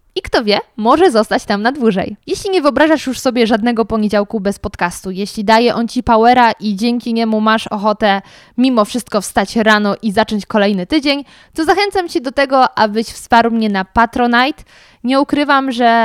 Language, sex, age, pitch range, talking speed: Polish, female, 20-39, 205-250 Hz, 180 wpm